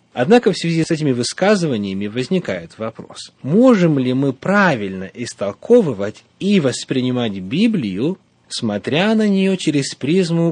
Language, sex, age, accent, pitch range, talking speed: Russian, male, 30-49, native, 120-180 Hz, 120 wpm